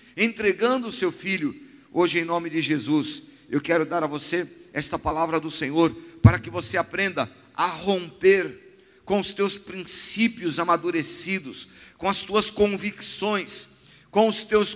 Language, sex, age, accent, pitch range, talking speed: Portuguese, male, 50-69, Brazilian, 175-225 Hz, 145 wpm